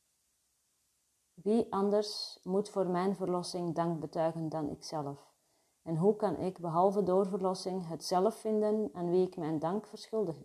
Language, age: Dutch, 40-59